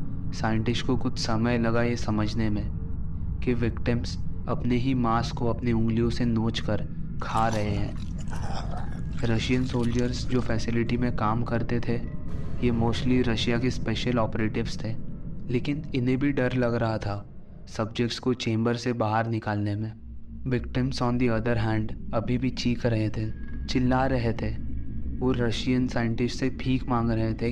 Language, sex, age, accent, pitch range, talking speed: Hindi, male, 20-39, native, 110-125 Hz, 155 wpm